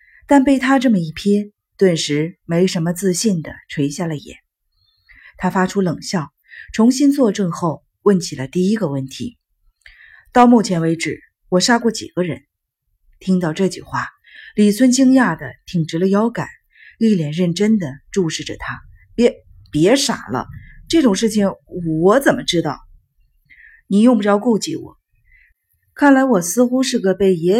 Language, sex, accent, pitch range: Chinese, female, native, 165-230 Hz